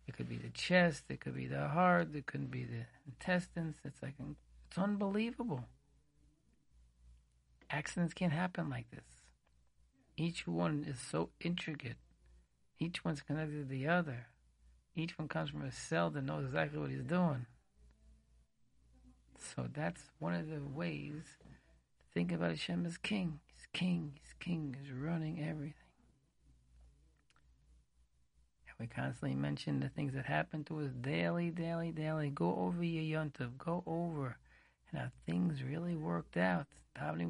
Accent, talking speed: American, 150 wpm